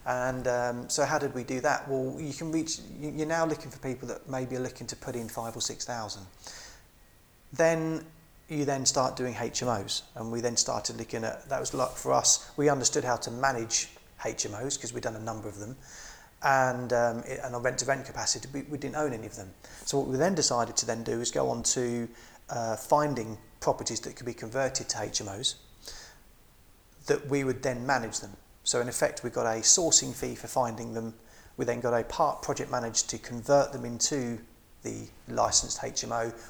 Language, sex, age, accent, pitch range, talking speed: English, male, 30-49, British, 115-135 Hz, 200 wpm